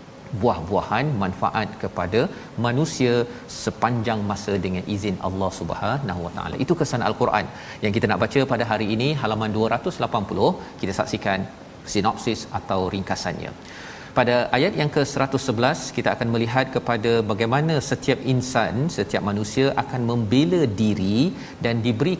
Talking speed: 125 wpm